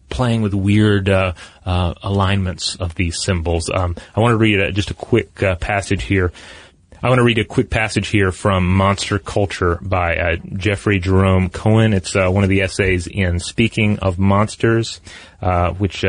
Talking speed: 185 wpm